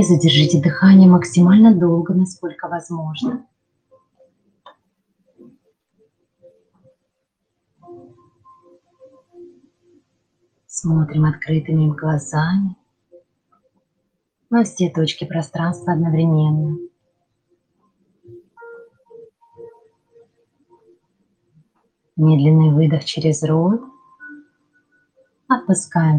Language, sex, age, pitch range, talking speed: Russian, female, 30-49, 160-265 Hz, 45 wpm